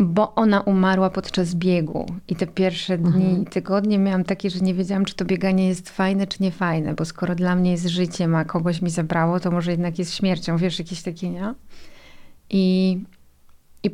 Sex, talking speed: female, 195 wpm